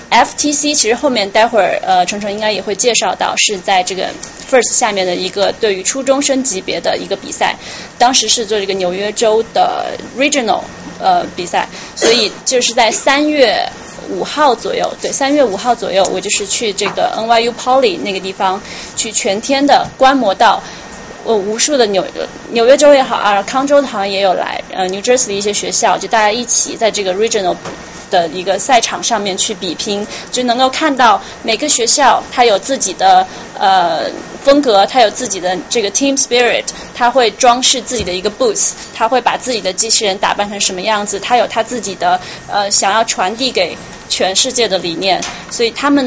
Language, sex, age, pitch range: Chinese, female, 20-39, 200-255 Hz